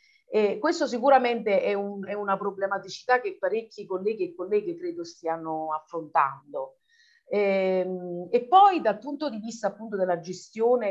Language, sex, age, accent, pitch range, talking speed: Italian, female, 40-59, native, 175-230 Hz, 145 wpm